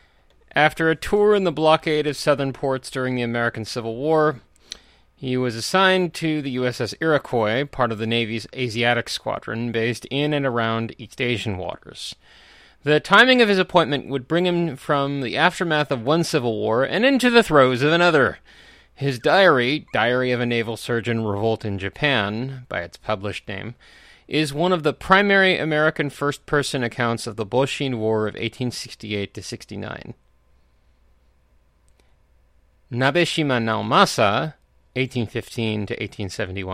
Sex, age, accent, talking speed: male, 30-49, American, 145 wpm